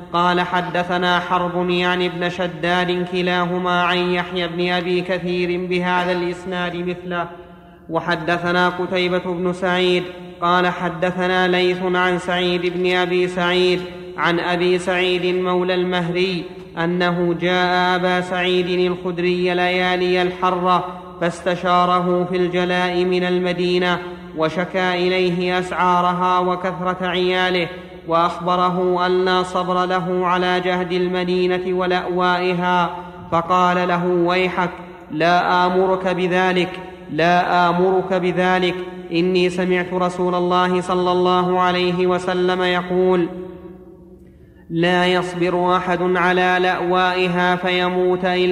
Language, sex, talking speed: Arabic, male, 100 wpm